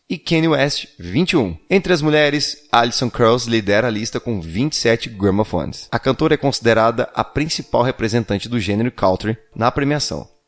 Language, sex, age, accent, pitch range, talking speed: Portuguese, male, 20-39, Brazilian, 110-140 Hz, 155 wpm